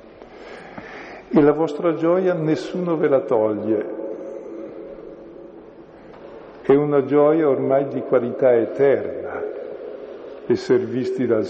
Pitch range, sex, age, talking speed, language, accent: 115-165 Hz, male, 50-69, 95 wpm, Italian, native